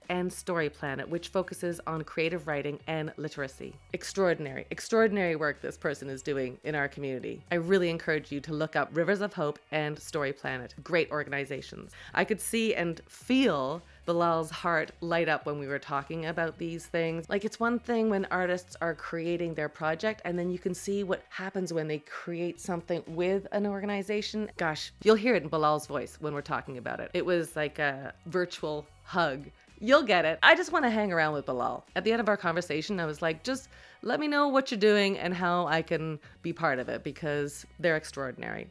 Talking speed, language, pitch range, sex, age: 205 wpm, English, 155-200 Hz, female, 30-49